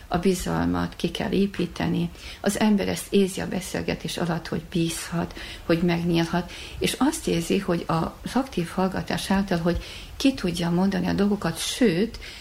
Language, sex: Hungarian, female